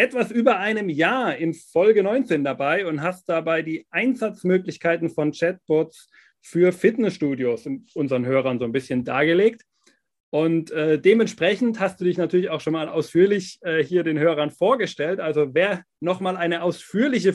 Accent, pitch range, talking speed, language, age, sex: German, 155-205 Hz, 150 wpm, German, 30-49, male